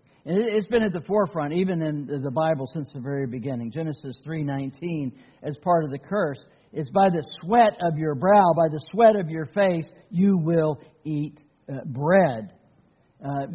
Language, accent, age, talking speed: English, American, 60-79, 170 wpm